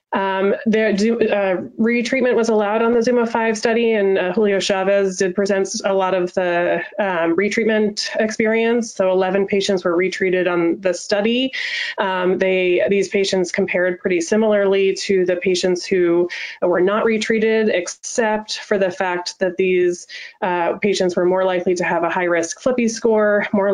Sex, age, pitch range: female, 20-39, 180-215 Hz